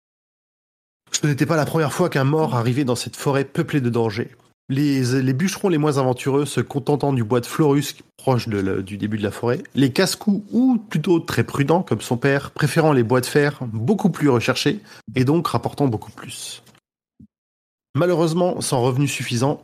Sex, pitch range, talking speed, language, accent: male, 120-150 Hz, 185 wpm, French, French